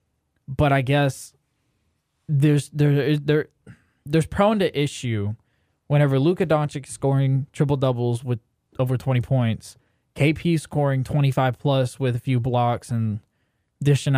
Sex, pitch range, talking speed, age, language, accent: male, 120-150 Hz, 125 wpm, 20-39, English, American